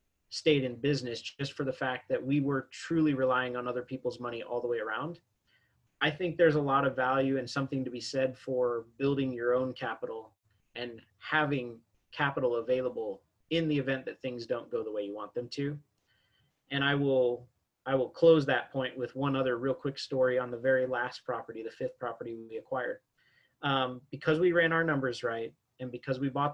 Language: English